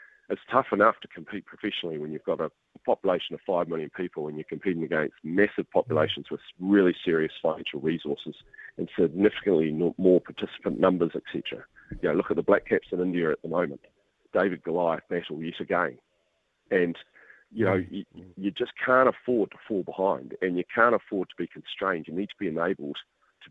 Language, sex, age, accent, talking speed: English, male, 40-59, Australian, 185 wpm